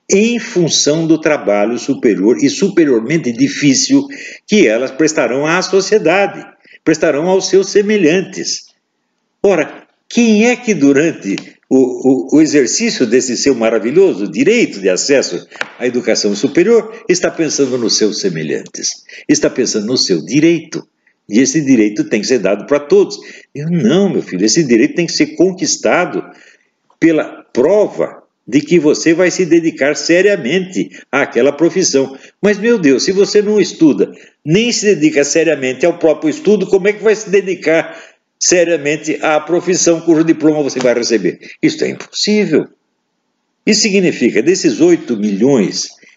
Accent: Brazilian